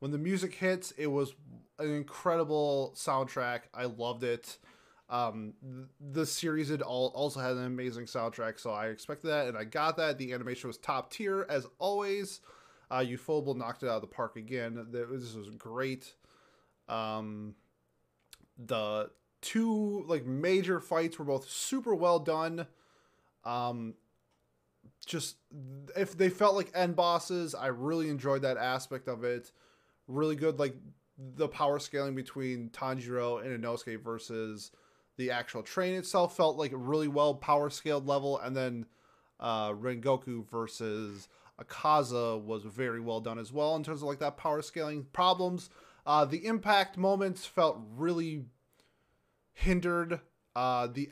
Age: 20-39